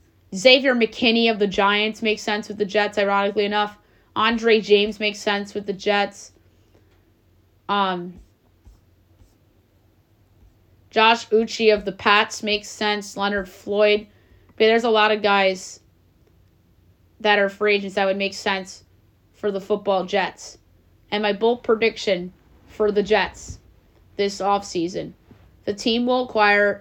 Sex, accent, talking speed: female, American, 130 wpm